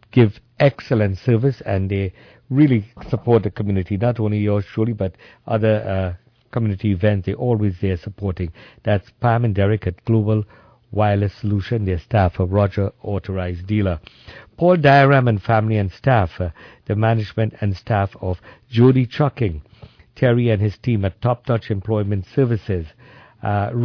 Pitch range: 100-120 Hz